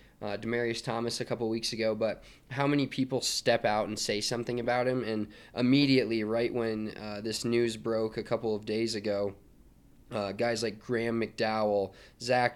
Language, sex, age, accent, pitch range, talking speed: English, male, 20-39, American, 110-125 Hz, 175 wpm